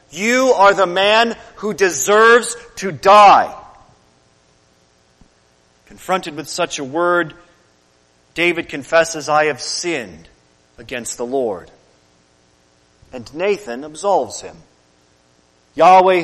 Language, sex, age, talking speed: English, male, 40-59, 95 wpm